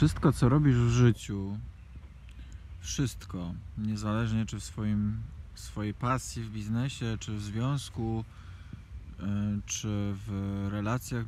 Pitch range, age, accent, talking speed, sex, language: 95-120 Hz, 20-39, native, 105 wpm, male, Polish